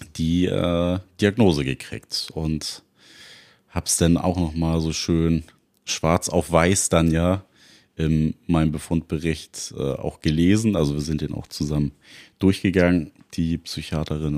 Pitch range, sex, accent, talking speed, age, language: 75-90 Hz, male, German, 135 wpm, 30-49, German